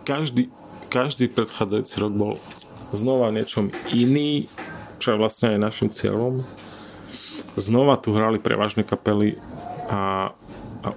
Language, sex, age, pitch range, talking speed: Slovak, male, 30-49, 100-115 Hz, 115 wpm